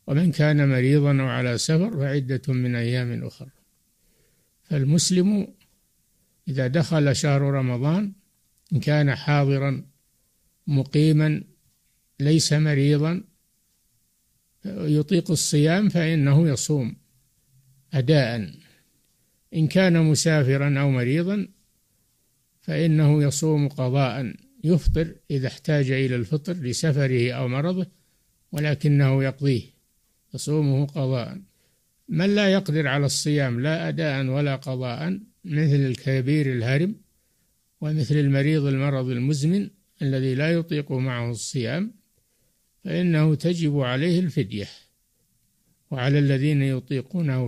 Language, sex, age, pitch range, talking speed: Arabic, male, 60-79, 130-160 Hz, 90 wpm